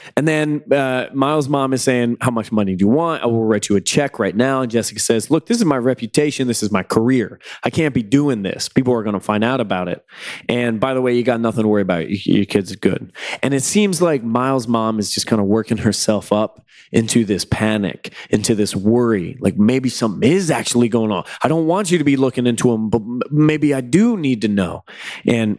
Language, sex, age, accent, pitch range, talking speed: English, male, 20-39, American, 105-135 Hz, 245 wpm